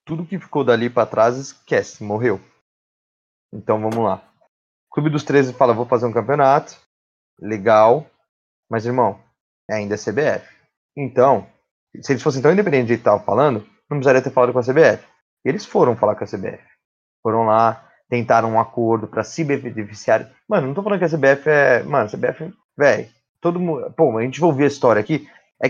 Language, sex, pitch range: Portuguese, male, 115-160 Hz